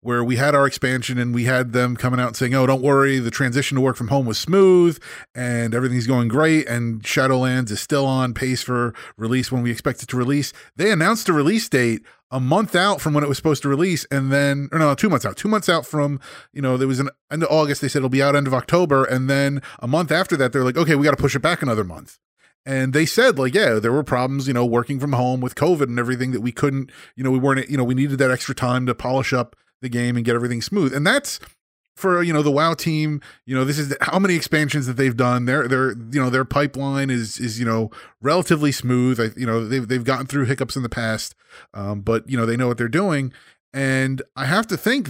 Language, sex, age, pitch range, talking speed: English, male, 30-49, 125-145 Hz, 260 wpm